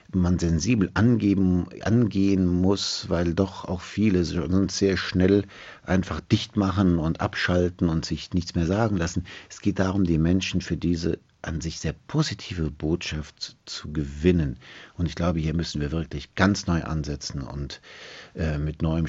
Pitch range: 80-105 Hz